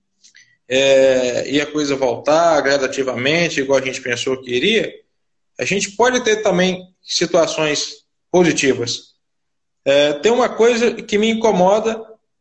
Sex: male